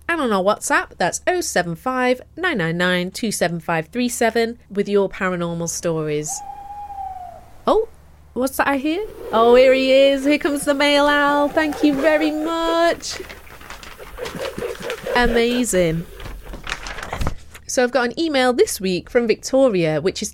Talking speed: 125 wpm